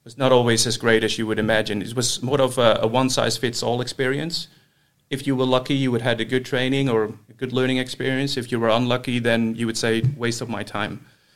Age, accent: 30-49, Finnish